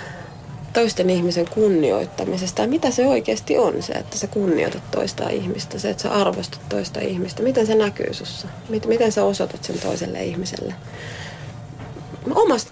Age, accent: 30-49, native